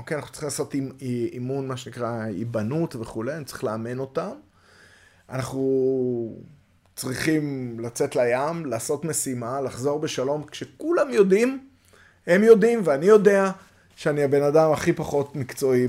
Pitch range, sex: 105-135 Hz, male